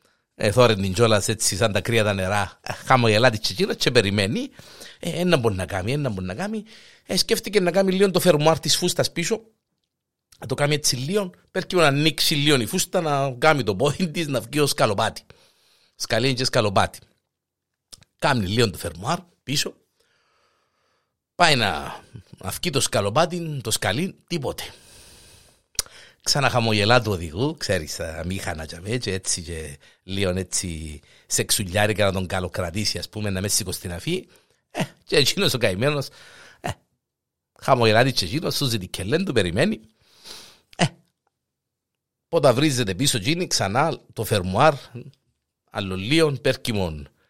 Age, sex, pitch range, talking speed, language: 50-69, male, 105-155 Hz, 120 wpm, Greek